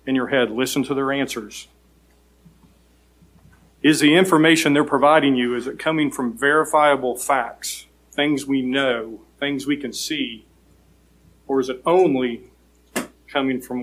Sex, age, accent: male, 40-59, American